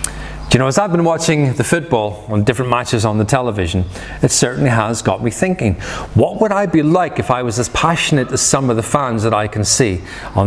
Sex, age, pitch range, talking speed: male, 30-49, 115-160 Hz, 230 wpm